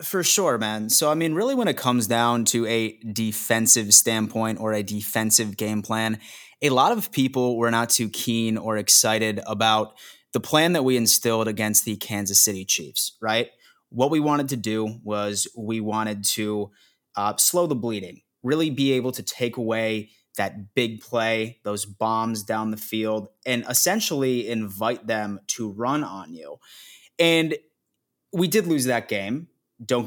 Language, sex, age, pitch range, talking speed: English, male, 20-39, 105-130 Hz, 170 wpm